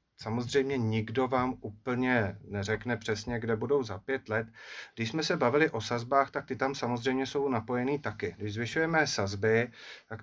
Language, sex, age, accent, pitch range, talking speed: Czech, male, 30-49, native, 110-130 Hz, 165 wpm